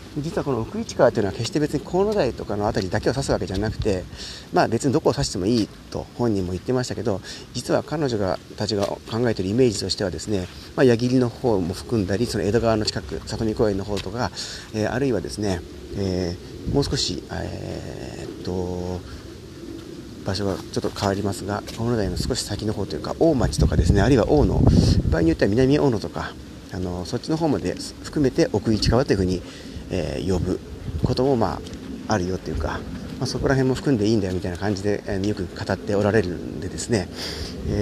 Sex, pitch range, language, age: male, 90-120 Hz, Japanese, 40-59